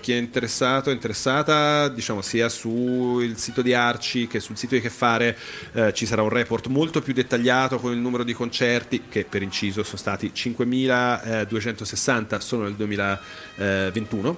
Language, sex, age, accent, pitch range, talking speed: Italian, male, 30-49, native, 105-125 Hz, 165 wpm